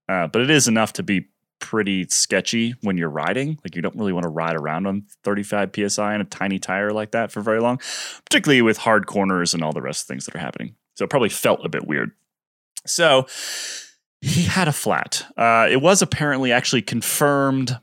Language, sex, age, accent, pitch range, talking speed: English, male, 20-39, American, 95-130 Hz, 215 wpm